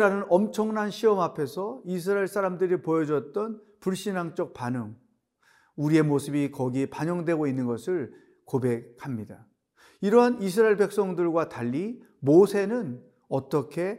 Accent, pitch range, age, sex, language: native, 150-205 Hz, 40-59, male, Korean